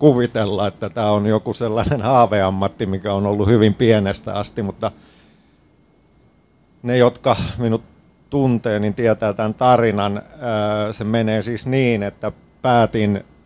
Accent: native